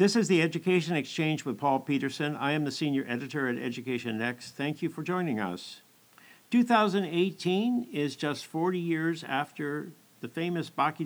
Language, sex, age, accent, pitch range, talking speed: English, male, 50-69, American, 125-160 Hz, 165 wpm